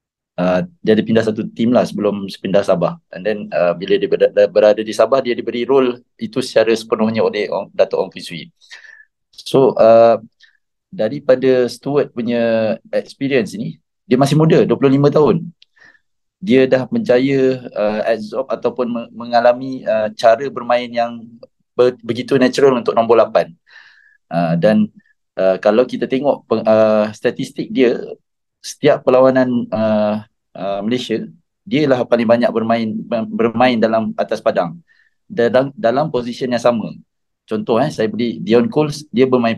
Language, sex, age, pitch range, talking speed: Malay, male, 20-39, 110-145 Hz, 140 wpm